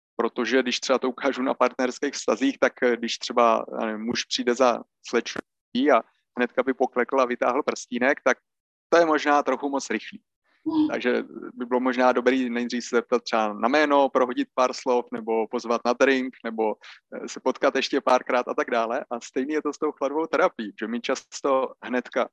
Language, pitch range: Slovak, 120-135 Hz